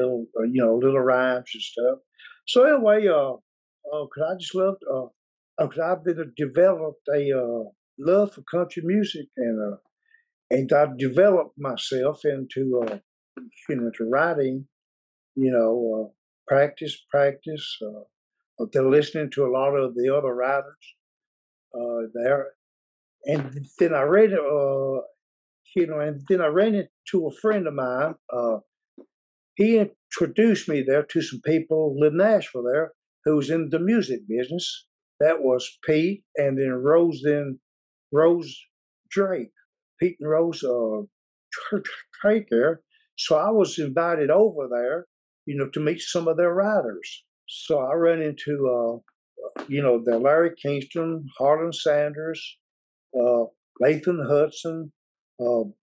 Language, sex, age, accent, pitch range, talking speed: English, male, 60-79, American, 130-175 Hz, 150 wpm